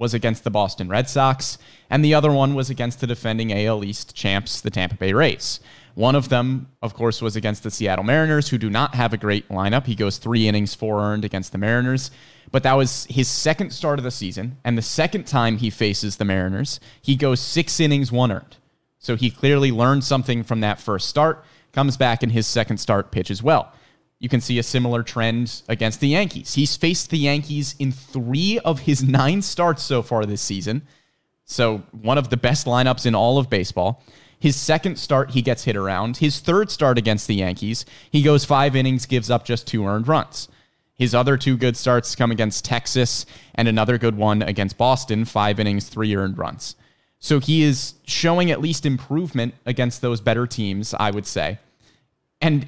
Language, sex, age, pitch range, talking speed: English, male, 30-49, 110-140 Hz, 205 wpm